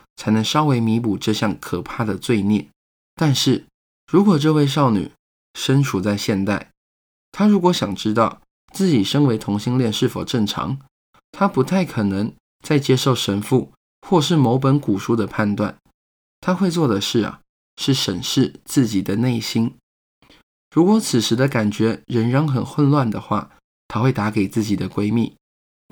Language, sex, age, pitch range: Chinese, male, 20-39, 105-145 Hz